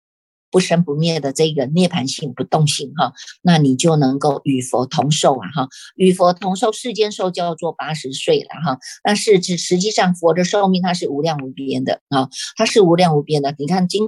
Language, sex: Chinese, female